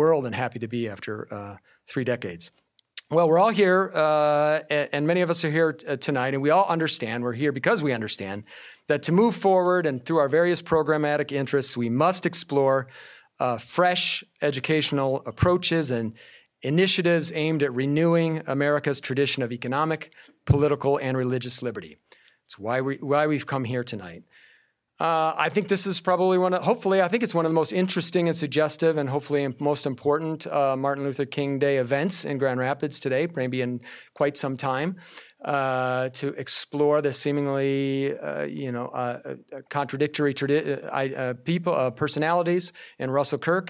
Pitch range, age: 130-165 Hz, 40-59